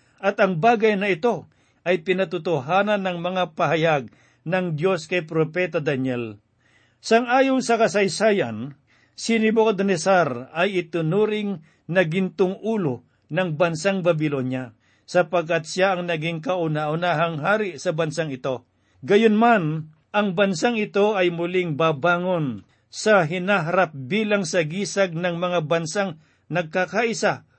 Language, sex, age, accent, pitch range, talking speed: Filipino, male, 50-69, native, 155-200 Hz, 115 wpm